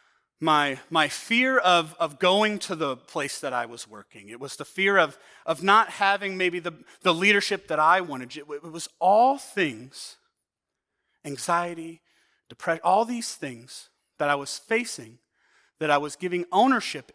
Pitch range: 150-195 Hz